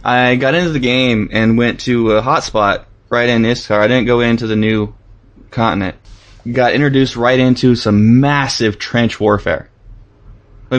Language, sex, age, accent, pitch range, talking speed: English, male, 20-39, American, 105-125 Hz, 160 wpm